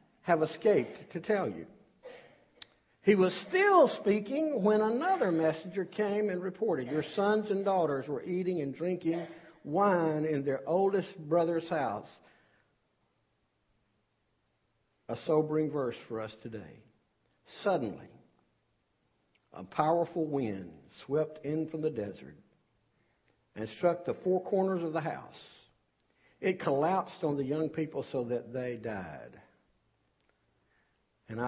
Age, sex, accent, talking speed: 60-79, male, American, 120 wpm